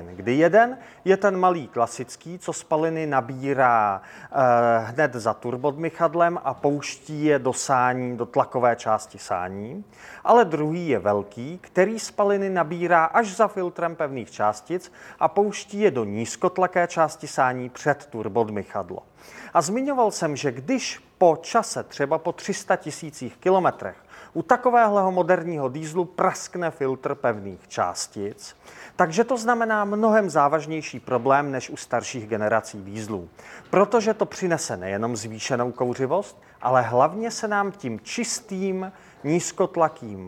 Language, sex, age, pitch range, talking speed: Czech, male, 30-49, 125-190 Hz, 130 wpm